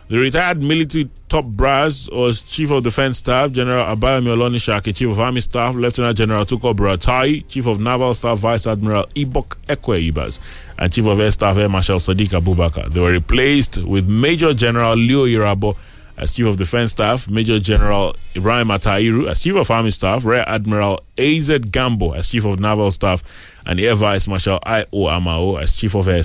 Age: 30-49